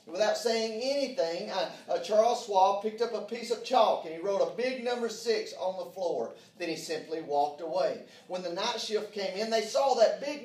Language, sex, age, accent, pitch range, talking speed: English, male, 40-59, American, 190-260 Hz, 220 wpm